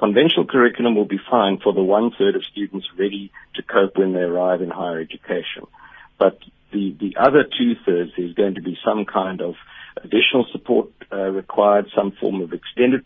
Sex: male